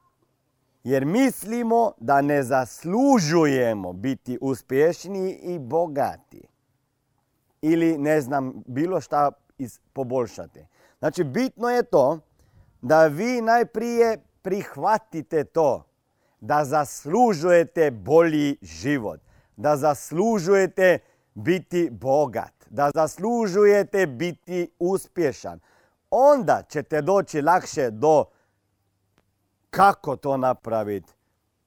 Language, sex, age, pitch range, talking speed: Croatian, male, 40-59, 140-220 Hz, 85 wpm